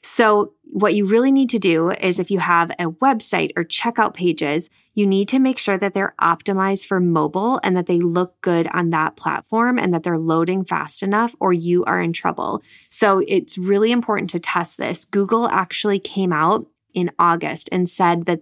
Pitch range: 170-205 Hz